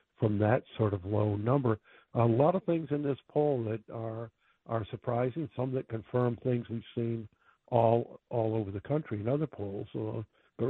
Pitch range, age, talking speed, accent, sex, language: 110-135 Hz, 60-79, 185 wpm, American, male, English